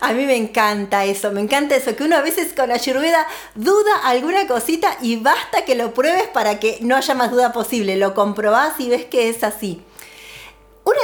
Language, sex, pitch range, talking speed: Spanish, female, 215-290 Hz, 205 wpm